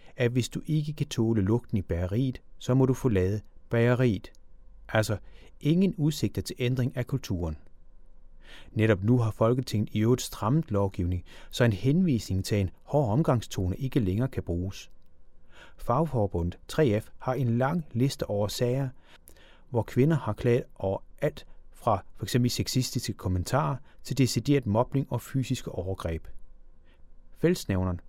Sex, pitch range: male, 90-140 Hz